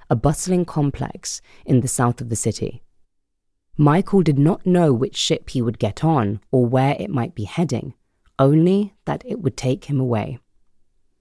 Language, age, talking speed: English, 30-49, 170 wpm